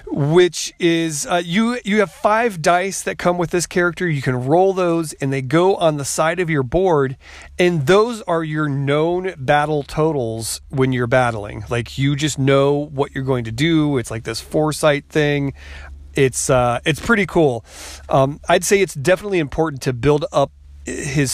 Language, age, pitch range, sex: English, 30-49, 130-165 Hz, male